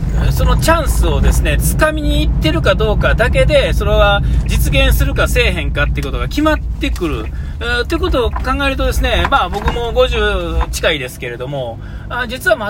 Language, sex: Japanese, male